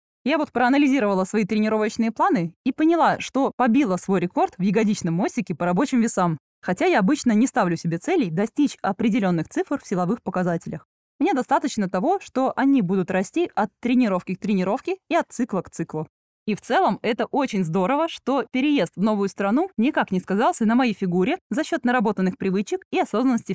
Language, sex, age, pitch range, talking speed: Russian, female, 20-39, 190-270 Hz, 180 wpm